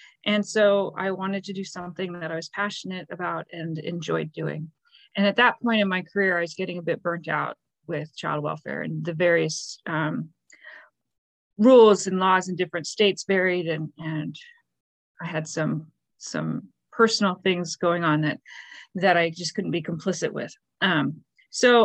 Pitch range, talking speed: 170-215 Hz, 175 wpm